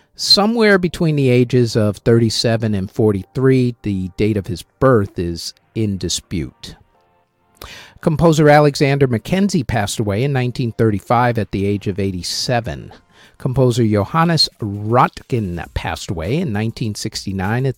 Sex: male